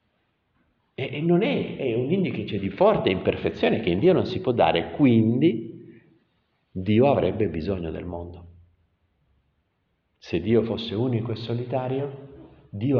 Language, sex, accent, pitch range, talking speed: Italian, male, native, 100-155 Hz, 135 wpm